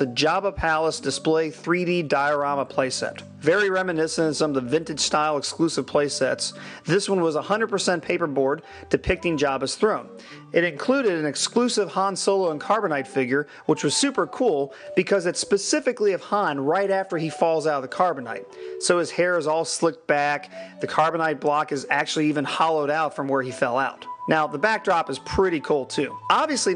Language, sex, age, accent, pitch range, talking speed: English, male, 40-59, American, 150-200 Hz, 175 wpm